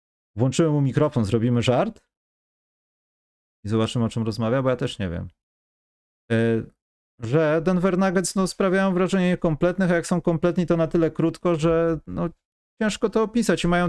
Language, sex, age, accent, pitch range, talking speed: Polish, male, 30-49, native, 115-160 Hz, 160 wpm